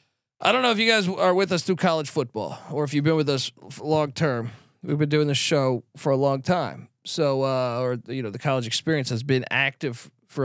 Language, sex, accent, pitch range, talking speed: English, male, American, 125-155 Hz, 235 wpm